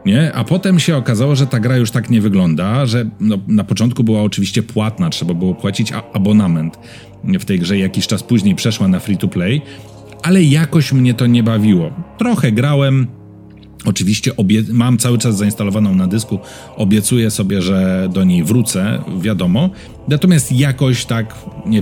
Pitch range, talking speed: 100-125 Hz, 170 wpm